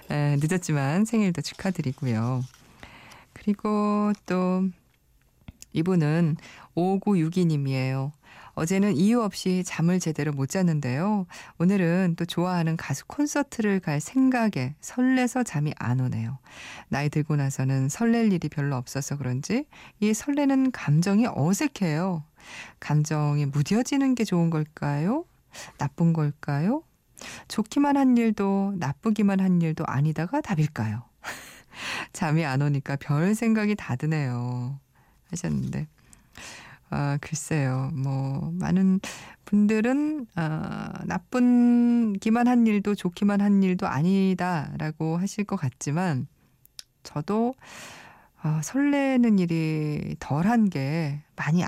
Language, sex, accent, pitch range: Korean, female, native, 145-210 Hz